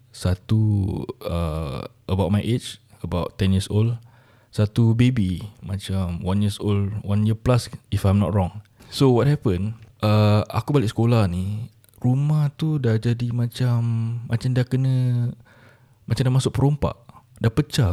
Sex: male